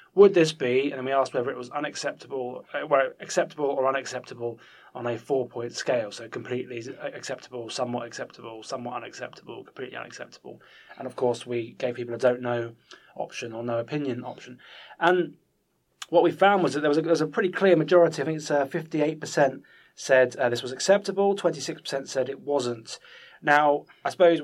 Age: 20-39